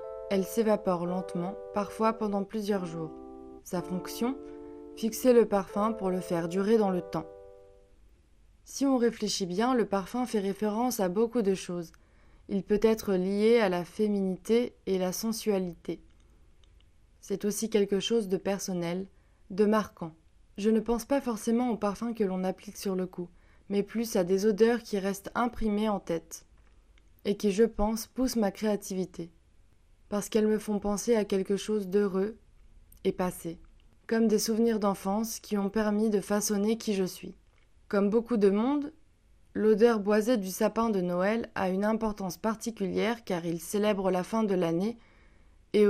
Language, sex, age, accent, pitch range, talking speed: French, female, 20-39, French, 180-220 Hz, 160 wpm